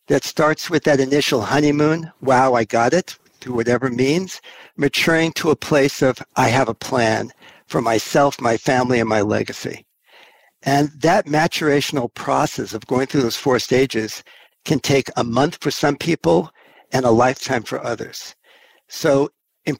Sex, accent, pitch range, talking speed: male, American, 120-150 Hz, 160 wpm